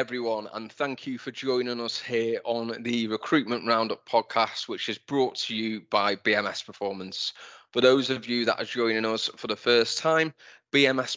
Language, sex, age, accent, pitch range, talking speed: English, male, 20-39, British, 110-125 Hz, 185 wpm